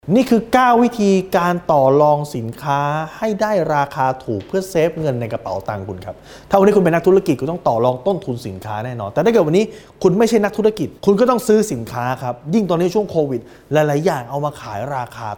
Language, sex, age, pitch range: Thai, male, 20-39, 125-195 Hz